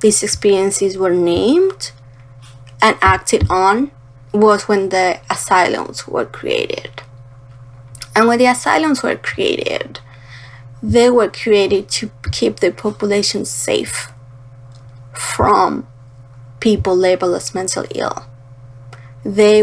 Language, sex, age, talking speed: English, female, 20-39, 105 wpm